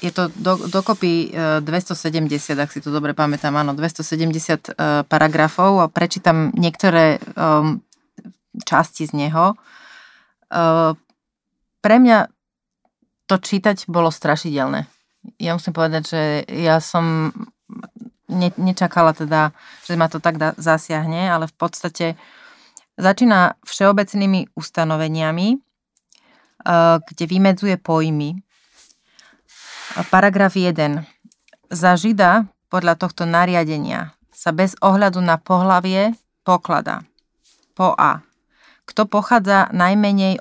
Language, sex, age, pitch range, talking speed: Slovak, female, 30-49, 160-200 Hz, 95 wpm